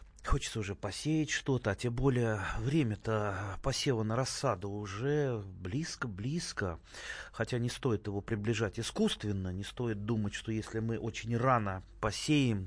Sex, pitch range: male, 105-135 Hz